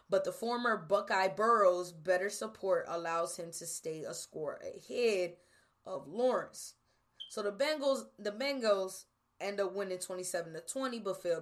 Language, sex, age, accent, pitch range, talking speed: English, female, 20-39, American, 175-230 Hz, 135 wpm